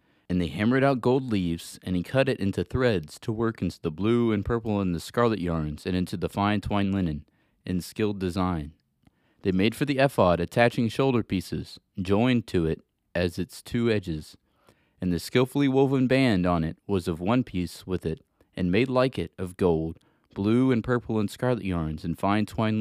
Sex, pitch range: male, 90-115 Hz